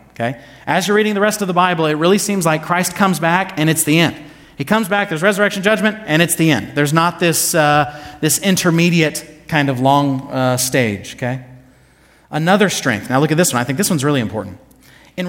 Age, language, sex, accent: 30-49, English, male, American